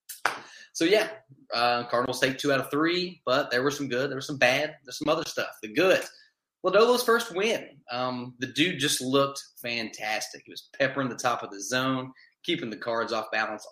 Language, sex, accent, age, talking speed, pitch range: English, male, American, 20-39, 200 wpm, 115-140 Hz